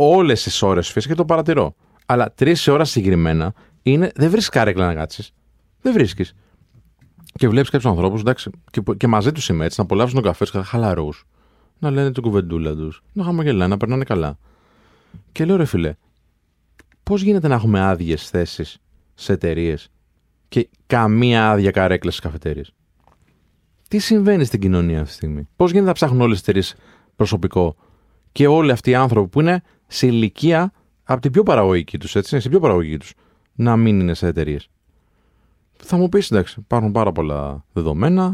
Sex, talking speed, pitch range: male, 165 wpm, 85-140 Hz